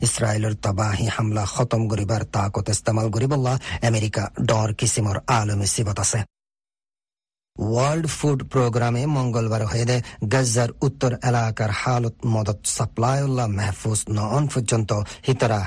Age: 40-59